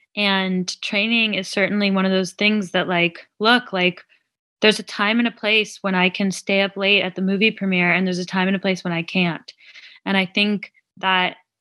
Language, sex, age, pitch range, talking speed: English, female, 20-39, 190-220 Hz, 215 wpm